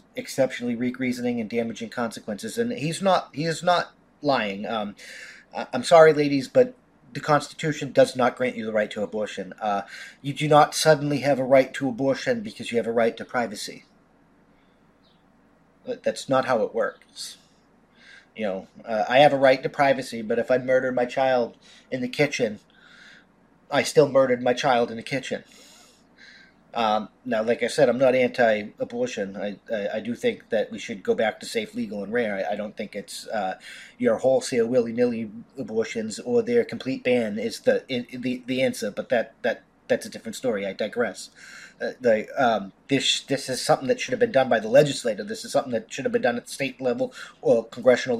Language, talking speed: English, 195 wpm